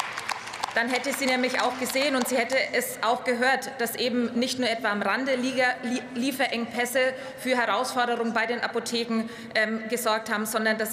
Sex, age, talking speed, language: female, 20-39, 165 wpm, German